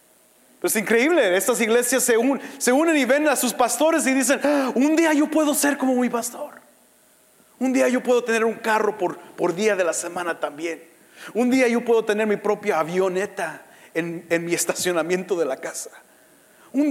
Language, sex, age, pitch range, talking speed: English, male, 40-59, 160-245 Hz, 185 wpm